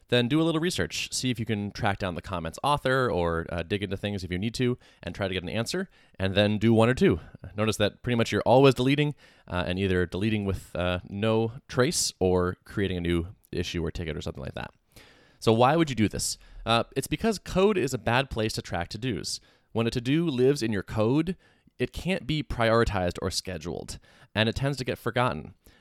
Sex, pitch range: male, 95-125 Hz